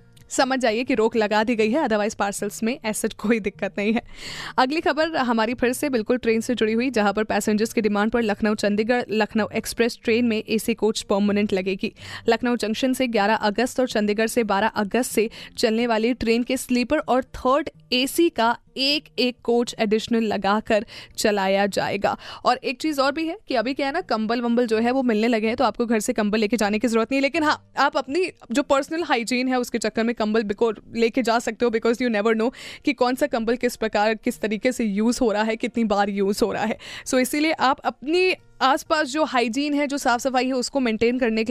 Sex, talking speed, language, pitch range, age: female, 225 wpm, Hindi, 220-255 Hz, 20-39